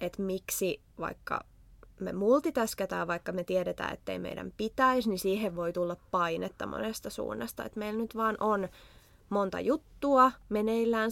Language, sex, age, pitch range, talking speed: Finnish, female, 20-39, 180-225 Hz, 145 wpm